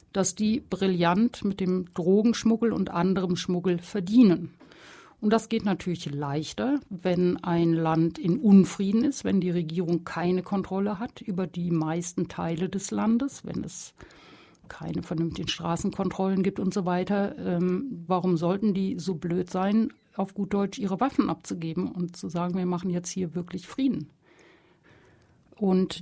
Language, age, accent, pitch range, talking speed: German, 60-79, German, 180-210 Hz, 150 wpm